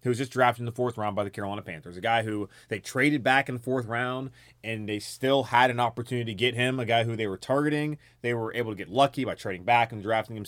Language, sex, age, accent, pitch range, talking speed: English, male, 30-49, American, 120-160 Hz, 280 wpm